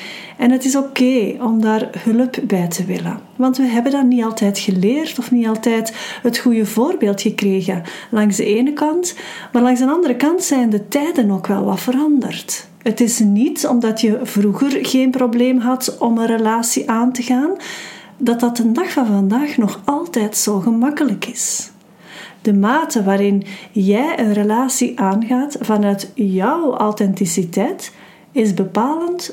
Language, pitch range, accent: Dutch, 205-255 Hz, Dutch